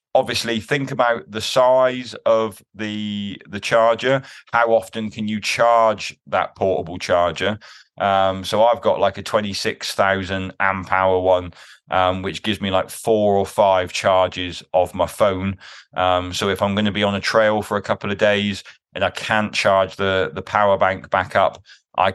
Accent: British